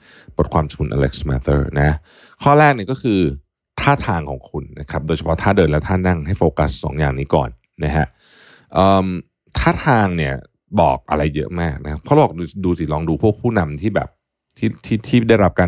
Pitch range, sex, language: 75-100 Hz, male, Thai